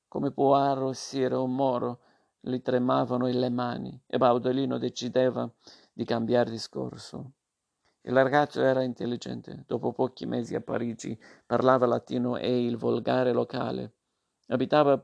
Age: 50-69